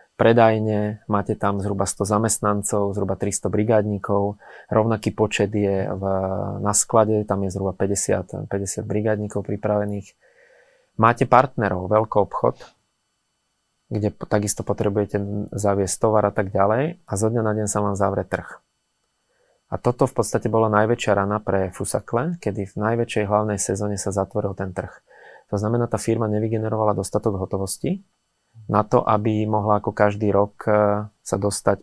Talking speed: 145 wpm